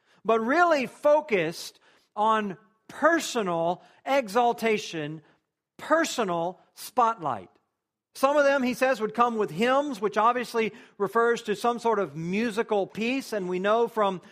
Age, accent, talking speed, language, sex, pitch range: 50-69, American, 125 wpm, English, male, 195-245 Hz